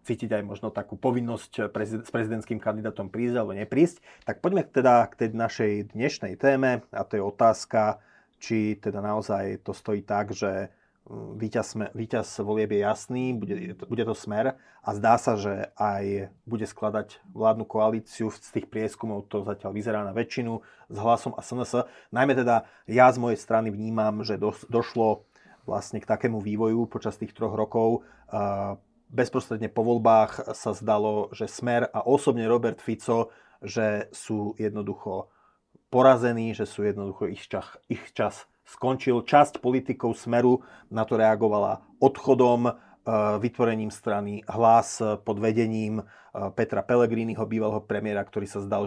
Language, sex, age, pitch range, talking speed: Slovak, male, 30-49, 105-120 Hz, 145 wpm